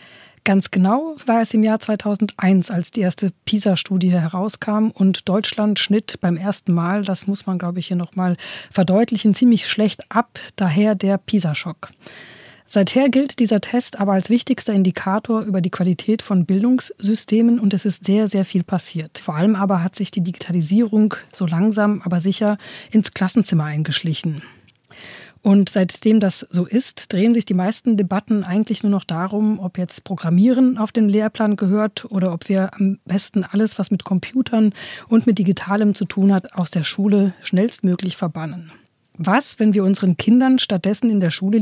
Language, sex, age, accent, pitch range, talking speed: German, female, 30-49, German, 180-215 Hz, 165 wpm